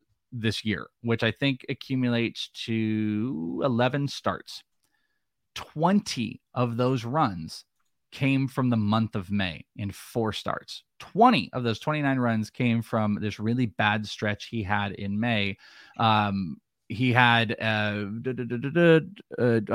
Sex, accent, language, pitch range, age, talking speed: male, American, English, 110-130 Hz, 20-39, 125 wpm